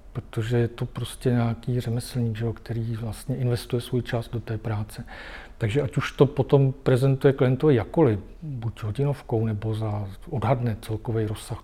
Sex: male